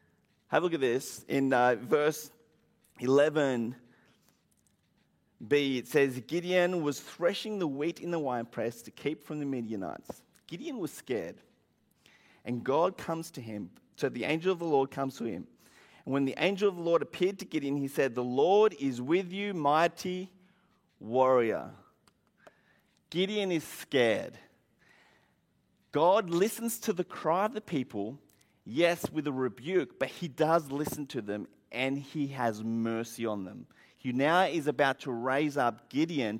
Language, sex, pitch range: English, male, 130-180 Hz